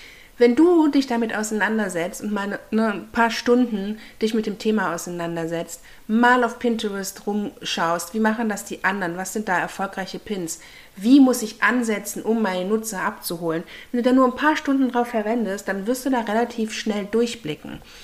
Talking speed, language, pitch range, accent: 185 wpm, German, 190-235 Hz, German